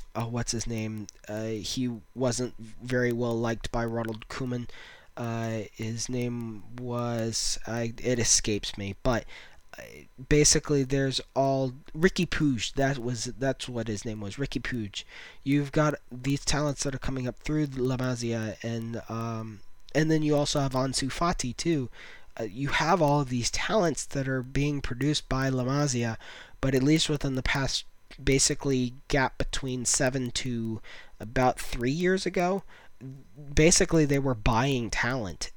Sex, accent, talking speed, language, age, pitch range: male, American, 155 wpm, English, 20-39, 115-140 Hz